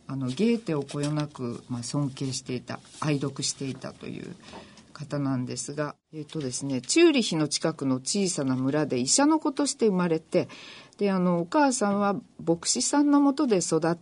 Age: 40-59